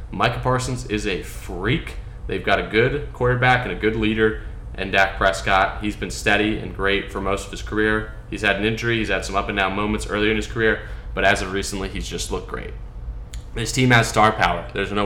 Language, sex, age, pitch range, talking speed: English, male, 20-39, 95-110 Hz, 225 wpm